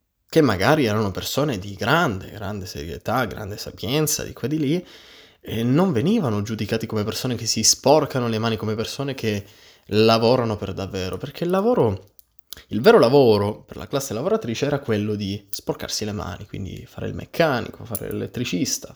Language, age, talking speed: Italian, 20-39, 170 wpm